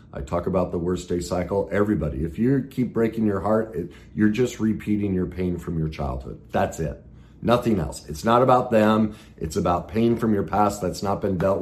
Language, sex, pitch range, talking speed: English, male, 80-115 Hz, 205 wpm